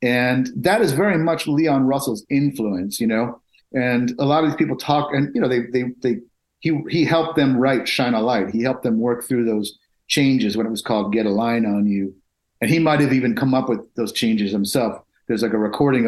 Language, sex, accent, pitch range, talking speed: English, male, American, 115-160 Hz, 230 wpm